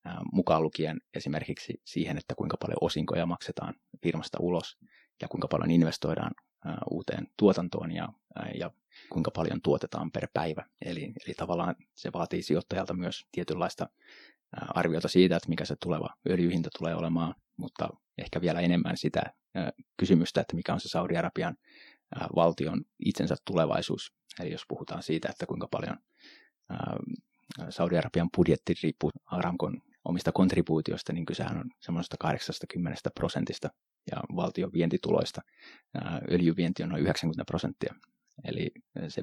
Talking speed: 130 wpm